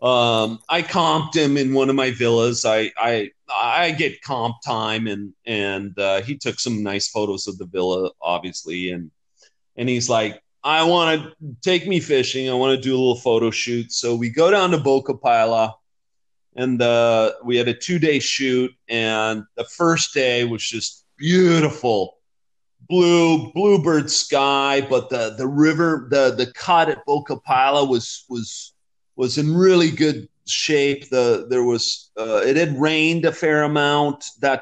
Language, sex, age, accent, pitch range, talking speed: English, male, 30-49, American, 115-150 Hz, 170 wpm